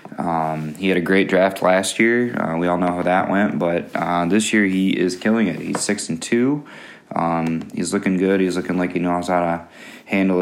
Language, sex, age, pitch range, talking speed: English, male, 20-39, 90-105 Hz, 225 wpm